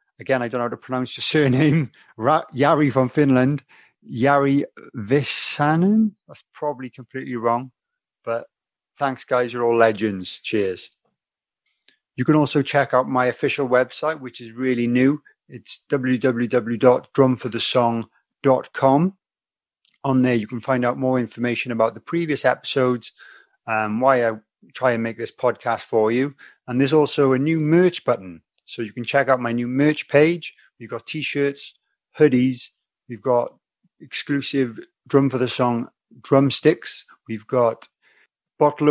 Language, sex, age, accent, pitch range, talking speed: English, male, 30-49, British, 120-140 Hz, 145 wpm